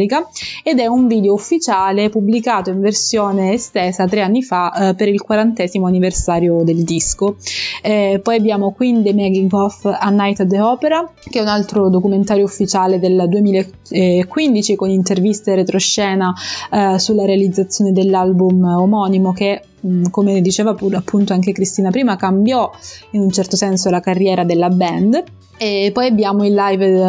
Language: Italian